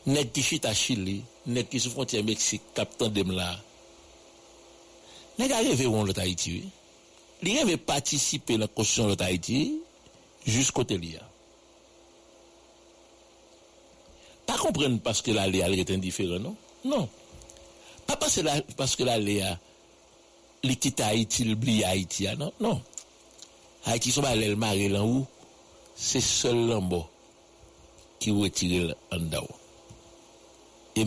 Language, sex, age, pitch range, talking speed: English, male, 60-79, 100-130 Hz, 140 wpm